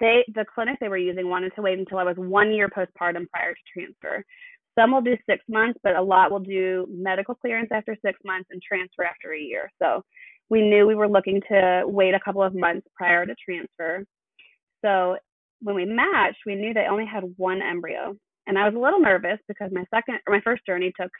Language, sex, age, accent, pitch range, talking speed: English, female, 20-39, American, 185-225 Hz, 210 wpm